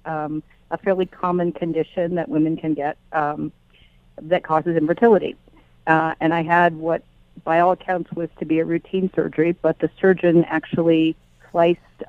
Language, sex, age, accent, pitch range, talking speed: English, female, 40-59, American, 150-170 Hz, 160 wpm